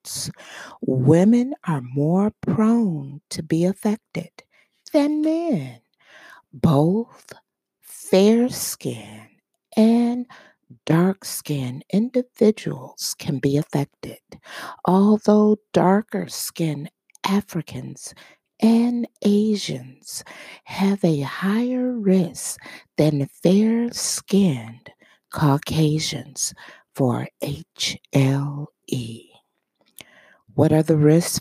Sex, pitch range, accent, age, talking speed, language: female, 150-225 Hz, American, 50-69, 65 wpm, English